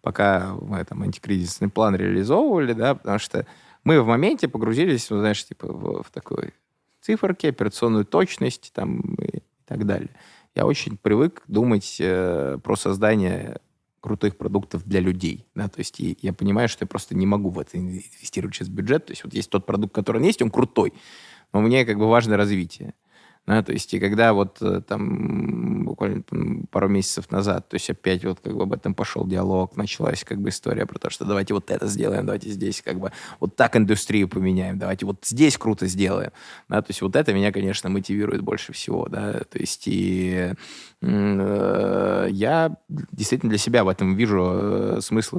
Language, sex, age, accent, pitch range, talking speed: Russian, male, 20-39, native, 95-105 Hz, 185 wpm